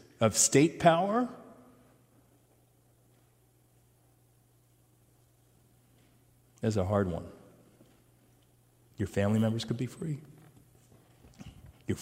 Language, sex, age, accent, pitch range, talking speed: English, male, 40-59, American, 105-125 Hz, 70 wpm